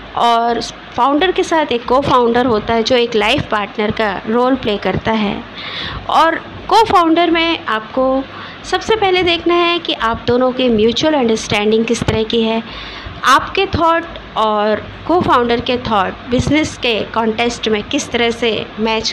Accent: native